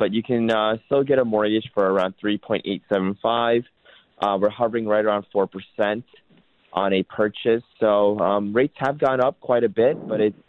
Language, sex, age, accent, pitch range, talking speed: English, male, 30-49, American, 95-110 Hz, 175 wpm